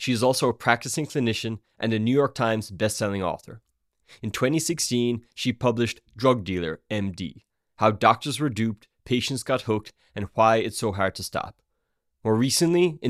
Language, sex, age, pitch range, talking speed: English, male, 20-39, 105-130 Hz, 170 wpm